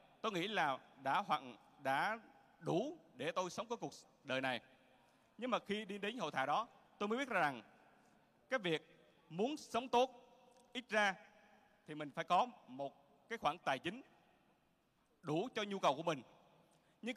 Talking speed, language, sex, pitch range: 175 wpm, Vietnamese, male, 160-225 Hz